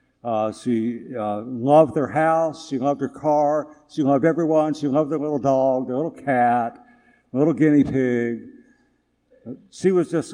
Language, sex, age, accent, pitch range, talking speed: English, male, 60-79, American, 115-155 Hz, 165 wpm